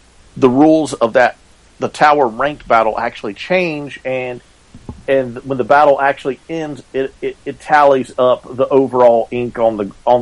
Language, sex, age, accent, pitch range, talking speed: English, male, 40-59, American, 105-135 Hz, 165 wpm